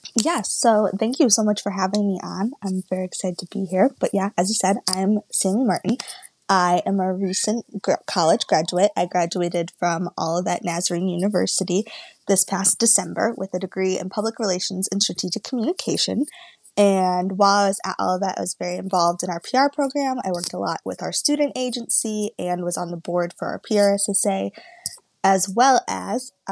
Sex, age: female, 20-39